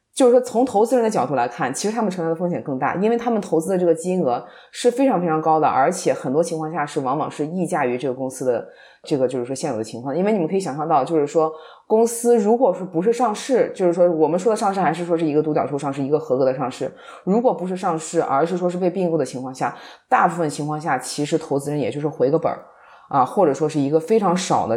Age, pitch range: 20-39, 150-195 Hz